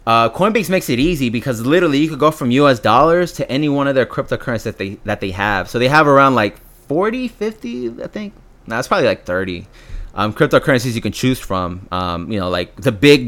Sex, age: male, 20-39